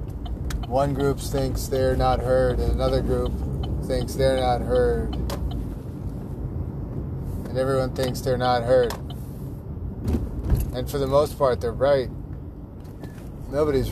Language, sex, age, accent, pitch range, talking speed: English, male, 30-49, American, 90-135 Hz, 115 wpm